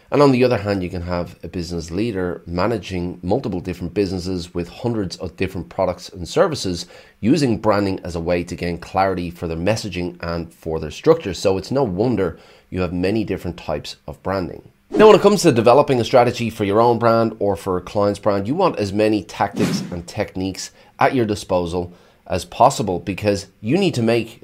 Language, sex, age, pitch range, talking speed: English, male, 30-49, 90-110 Hz, 200 wpm